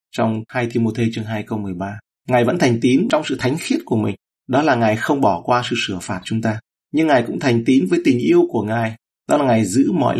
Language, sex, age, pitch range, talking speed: Vietnamese, male, 30-49, 110-135 Hz, 255 wpm